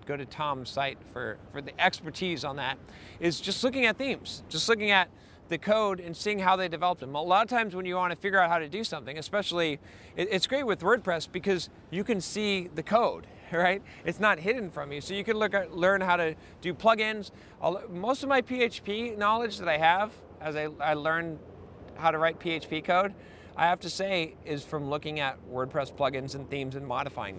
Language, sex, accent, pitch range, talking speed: English, male, American, 150-195 Hz, 210 wpm